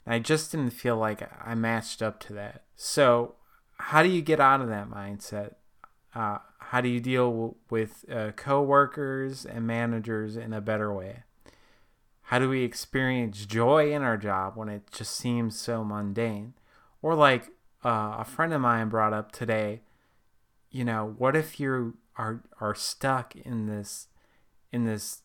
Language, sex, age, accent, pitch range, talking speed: English, male, 30-49, American, 110-130 Hz, 170 wpm